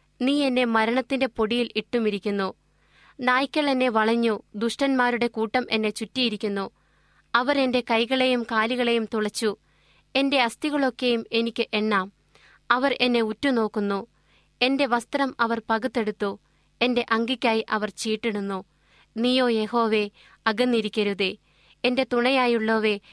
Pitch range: 220-250 Hz